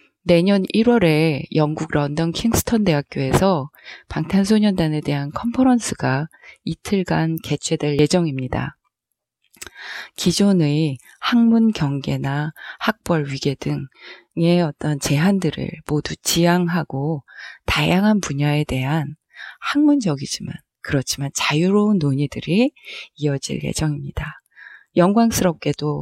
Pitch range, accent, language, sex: 150-200 Hz, native, Korean, female